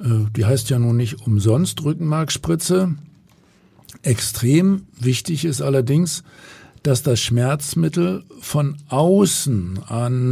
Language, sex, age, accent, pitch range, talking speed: German, male, 50-69, German, 120-145 Hz, 100 wpm